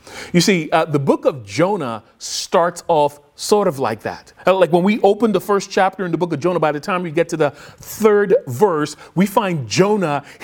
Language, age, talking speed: English, 40-59, 220 wpm